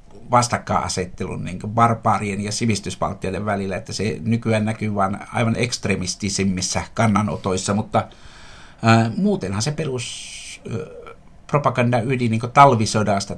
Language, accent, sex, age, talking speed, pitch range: Finnish, native, male, 60-79, 105 wpm, 100-115 Hz